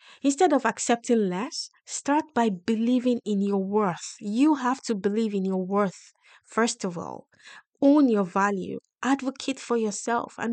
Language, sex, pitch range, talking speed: English, female, 195-240 Hz, 155 wpm